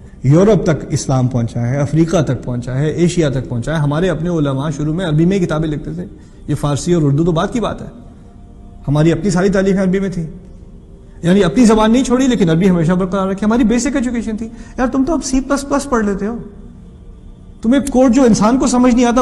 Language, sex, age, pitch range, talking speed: Urdu, male, 30-49, 150-240 Hz, 220 wpm